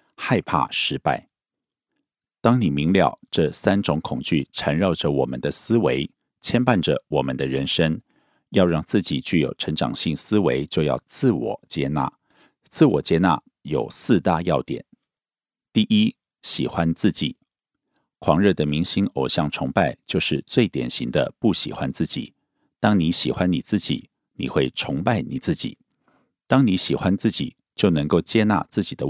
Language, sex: Korean, male